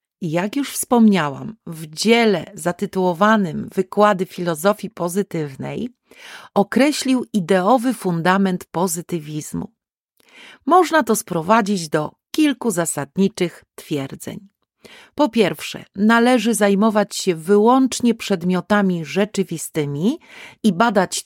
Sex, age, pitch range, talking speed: female, 40-59, 170-225 Hz, 85 wpm